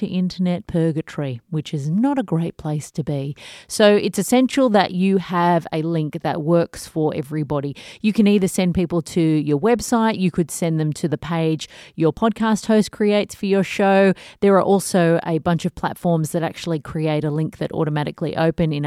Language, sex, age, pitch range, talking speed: English, female, 30-49, 155-200 Hz, 195 wpm